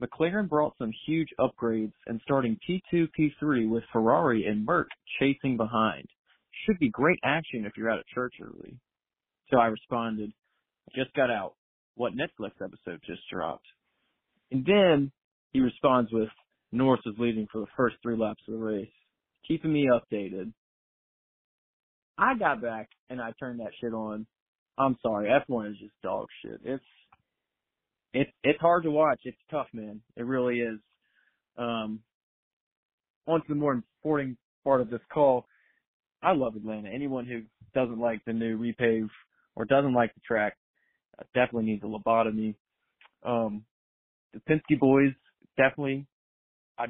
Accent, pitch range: American, 110-135 Hz